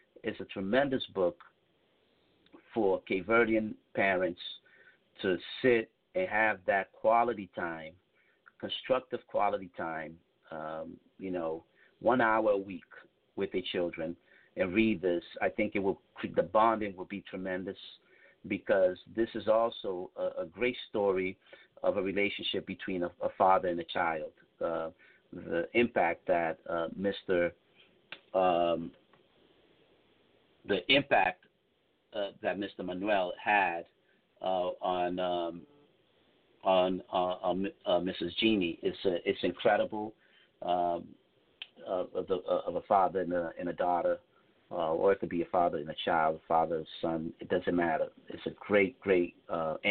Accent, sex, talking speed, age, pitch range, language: American, male, 135 wpm, 50-69, 90-115 Hz, English